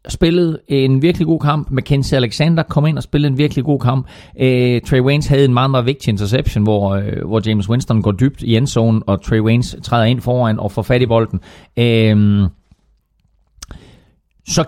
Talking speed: 185 wpm